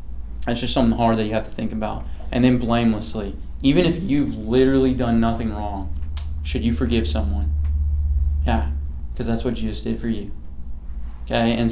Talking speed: 175 wpm